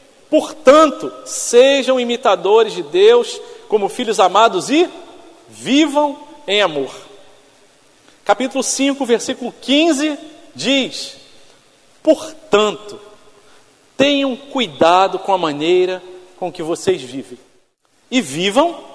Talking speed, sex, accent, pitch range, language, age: 90 wpm, male, Brazilian, 200-285 Hz, Portuguese, 50-69